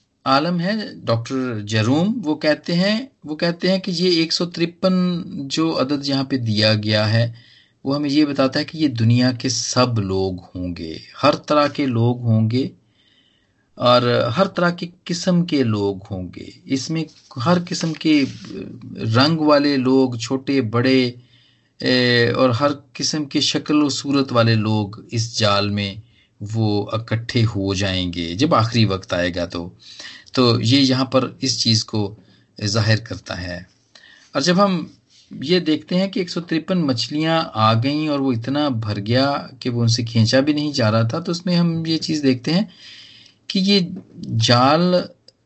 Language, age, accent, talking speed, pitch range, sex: Hindi, 40-59, native, 160 wpm, 110-155 Hz, male